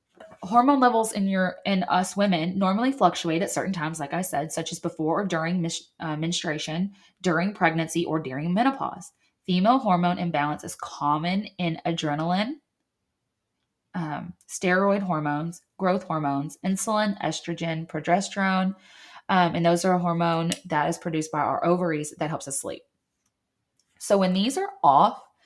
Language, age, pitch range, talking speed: English, 20-39, 165-200 Hz, 150 wpm